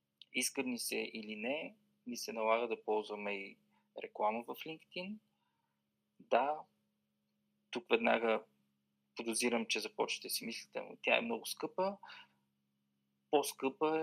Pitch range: 100-155 Hz